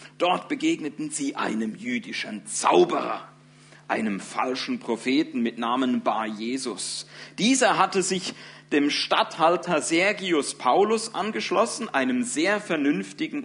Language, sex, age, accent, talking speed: German, male, 50-69, German, 105 wpm